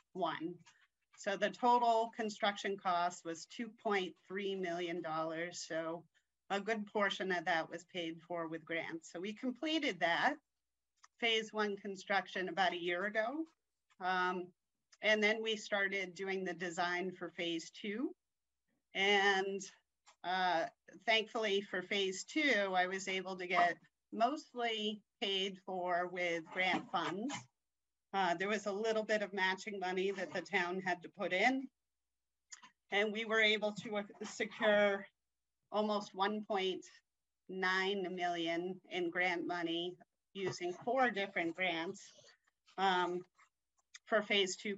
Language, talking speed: English, 130 wpm